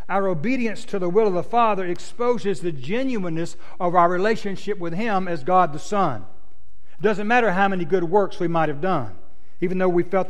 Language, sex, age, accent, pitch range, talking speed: English, male, 60-79, American, 150-205 Hz, 205 wpm